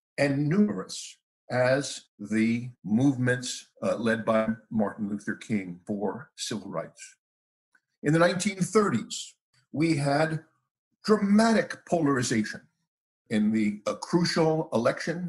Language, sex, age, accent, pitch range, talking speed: English, male, 50-69, American, 140-185 Hz, 100 wpm